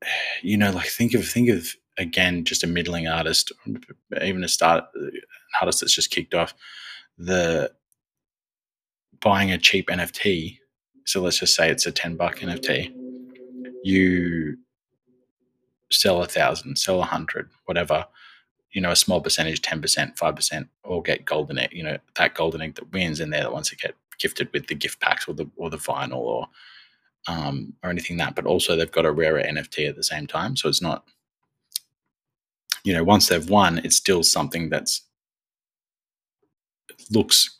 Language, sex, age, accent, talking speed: English, male, 20-39, Australian, 175 wpm